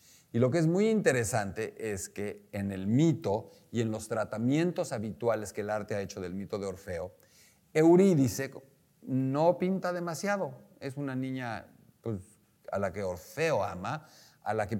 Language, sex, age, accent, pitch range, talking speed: Spanish, male, 50-69, Mexican, 110-150 Hz, 165 wpm